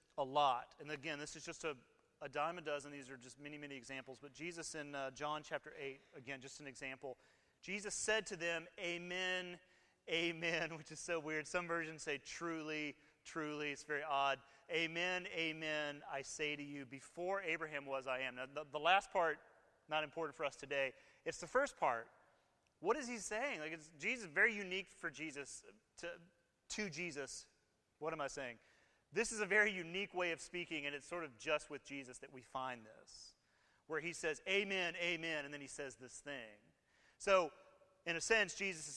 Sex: male